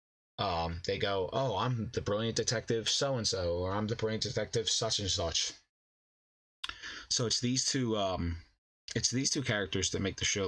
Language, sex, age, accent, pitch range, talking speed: English, male, 20-39, American, 95-125 Hz, 185 wpm